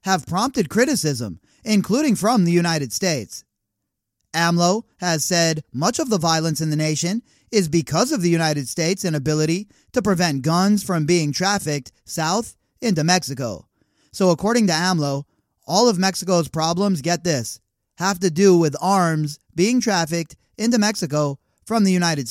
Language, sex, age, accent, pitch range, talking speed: English, male, 30-49, American, 160-195 Hz, 150 wpm